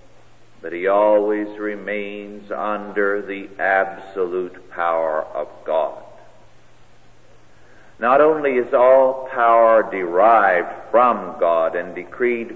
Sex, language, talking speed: male, English, 95 wpm